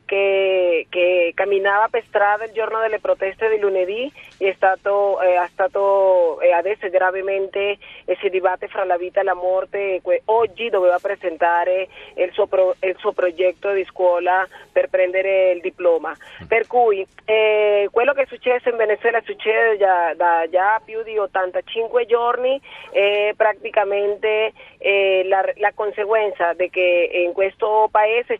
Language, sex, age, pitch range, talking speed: Italian, female, 30-49, 190-230 Hz, 155 wpm